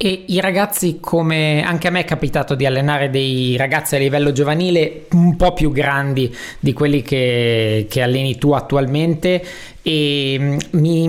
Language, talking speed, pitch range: Italian, 150 wpm, 145-175 Hz